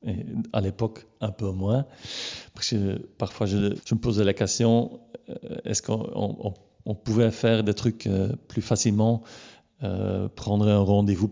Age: 40-59